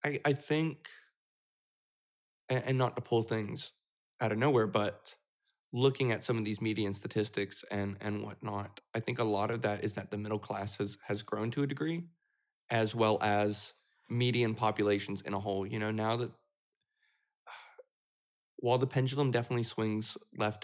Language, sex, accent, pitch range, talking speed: English, male, American, 105-125 Hz, 170 wpm